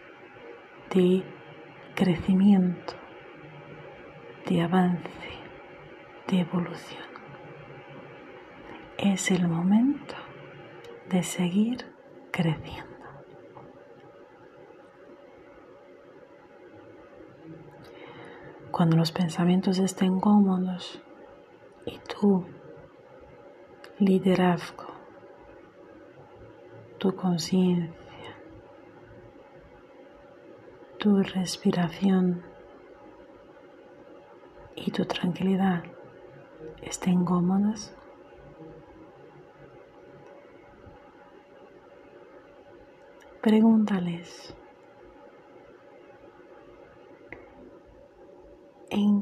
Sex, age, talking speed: female, 40-59, 40 wpm